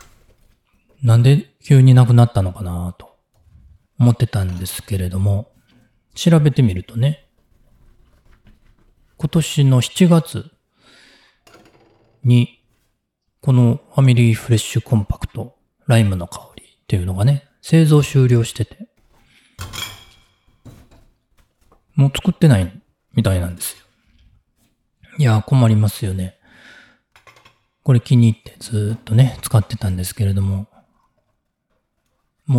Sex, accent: male, native